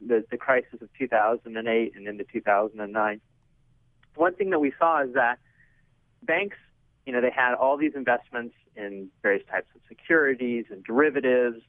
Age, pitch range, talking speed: 40-59, 120-155 Hz, 155 wpm